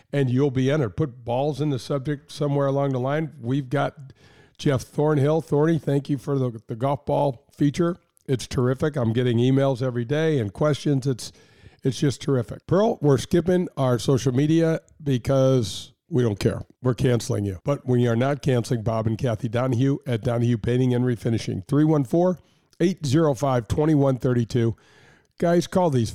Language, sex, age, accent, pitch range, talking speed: English, male, 50-69, American, 120-150 Hz, 160 wpm